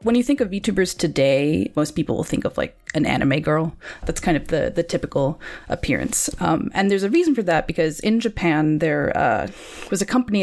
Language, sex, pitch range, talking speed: English, female, 160-205 Hz, 215 wpm